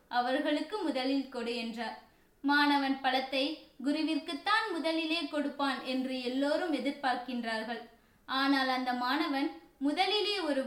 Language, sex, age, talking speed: Tamil, female, 20-39, 95 wpm